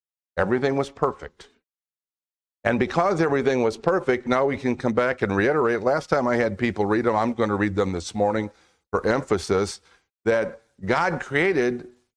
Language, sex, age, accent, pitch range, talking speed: English, male, 50-69, American, 100-135 Hz, 170 wpm